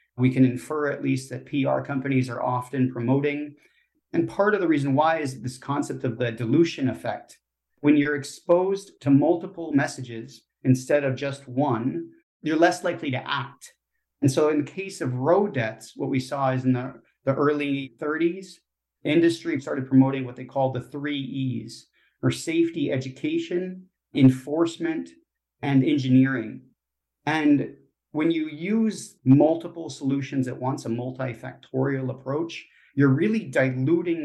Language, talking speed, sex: English, 150 wpm, male